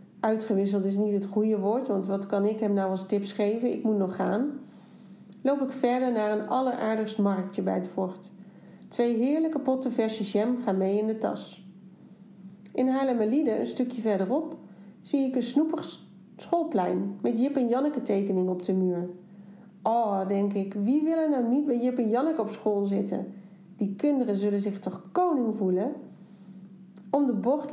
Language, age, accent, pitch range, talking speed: Dutch, 40-59, Dutch, 195-250 Hz, 175 wpm